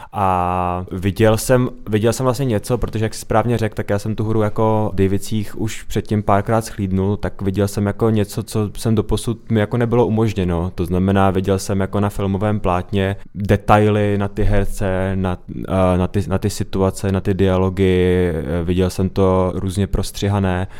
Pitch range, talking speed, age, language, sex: 95-110 Hz, 175 wpm, 20-39, Czech, male